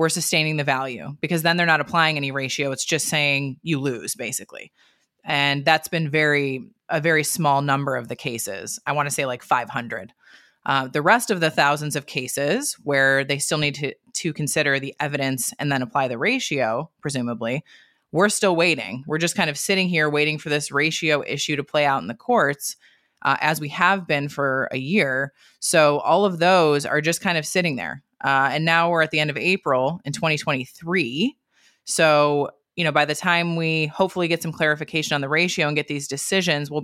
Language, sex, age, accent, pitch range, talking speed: English, female, 20-39, American, 145-175 Hz, 205 wpm